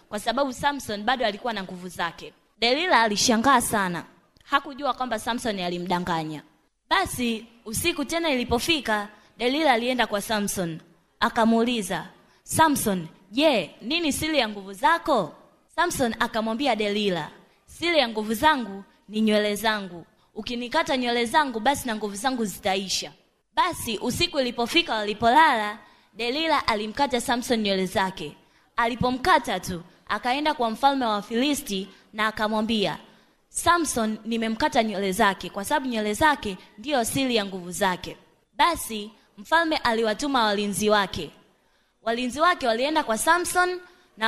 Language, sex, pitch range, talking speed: Swahili, female, 210-275 Hz, 125 wpm